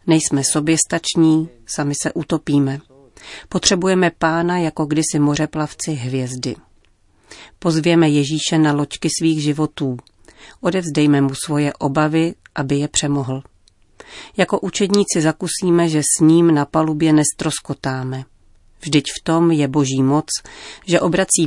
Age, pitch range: 40-59, 140-165 Hz